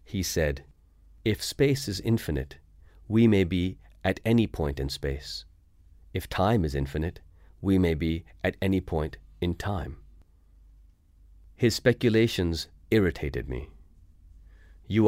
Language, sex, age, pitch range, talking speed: English, male, 40-59, 75-95 Hz, 125 wpm